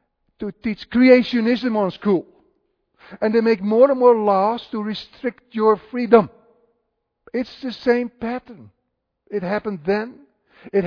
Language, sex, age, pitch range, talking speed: English, male, 50-69, 145-230 Hz, 135 wpm